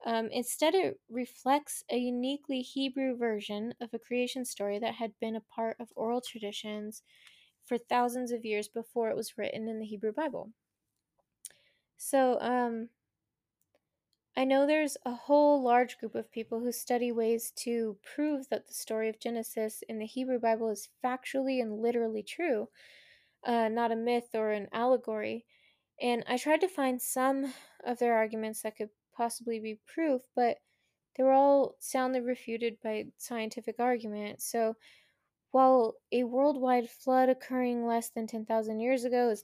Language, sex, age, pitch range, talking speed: English, female, 10-29, 220-260 Hz, 155 wpm